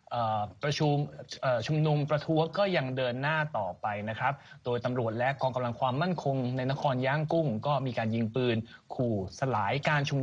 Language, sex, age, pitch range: Thai, male, 20-39, 120-150 Hz